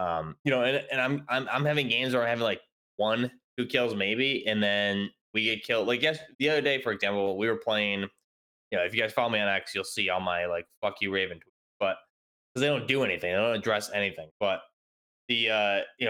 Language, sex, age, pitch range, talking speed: English, male, 20-39, 95-125 Hz, 240 wpm